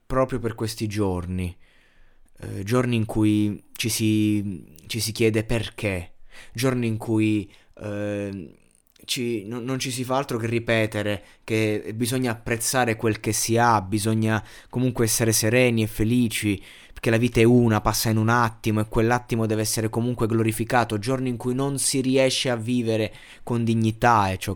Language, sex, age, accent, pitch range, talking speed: Italian, male, 20-39, native, 100-115 Hz, 160 wpm